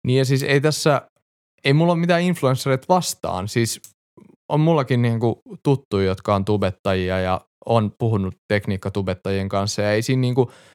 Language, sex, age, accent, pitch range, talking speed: Finnish, male, 20-39, native, 105-140 Hz, 175 wpm